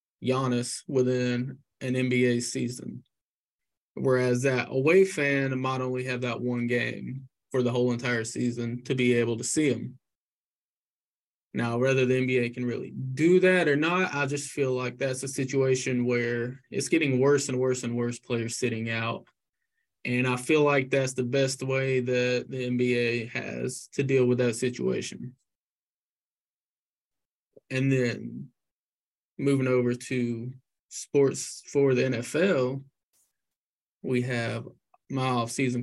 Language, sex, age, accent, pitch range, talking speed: English, male, 20-39, American, 125-135 Hz, 140 wpm